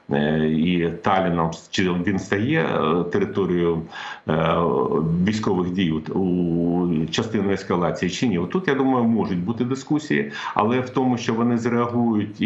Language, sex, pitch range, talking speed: Ukrainian, male, 85-110 Hz, 120 wpm